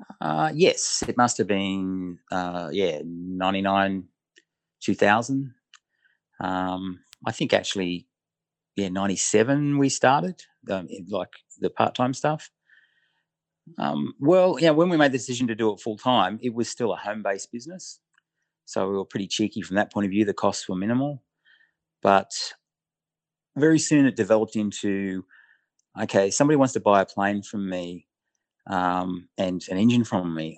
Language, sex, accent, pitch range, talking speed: English, male, Australian, 90-110 Hz, 150 wpm